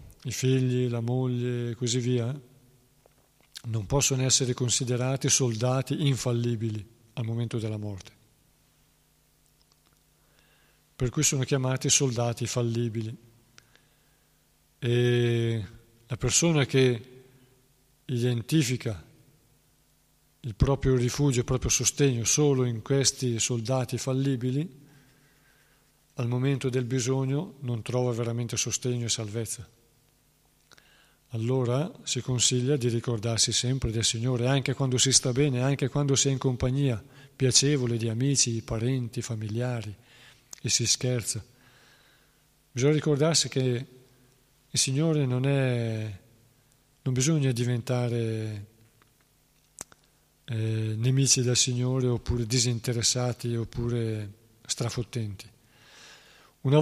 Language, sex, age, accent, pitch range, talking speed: Italian, male, 50-69, native, 120-135 Hz, 100 wpm